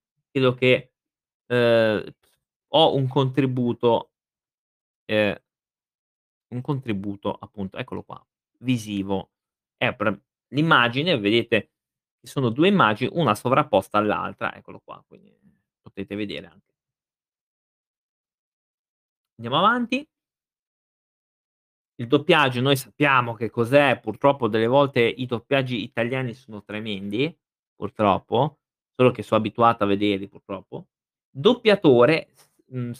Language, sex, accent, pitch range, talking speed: Italian, male, native, 110-145 Hz, 100 wpm